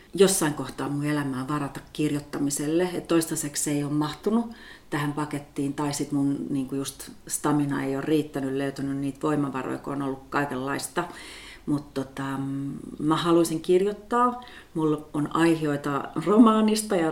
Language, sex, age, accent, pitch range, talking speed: Finnish, female, 30-49, native, 140-165 Hz, 135 wpm